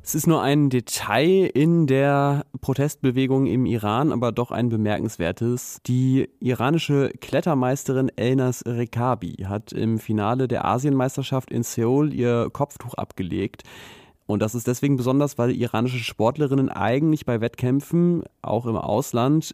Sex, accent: male, German